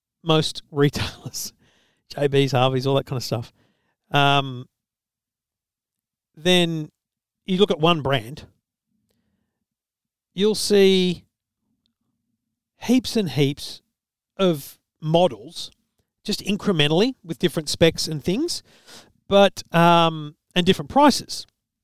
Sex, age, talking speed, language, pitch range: male, 40-59, 95 wpm, English, 135-190 Hz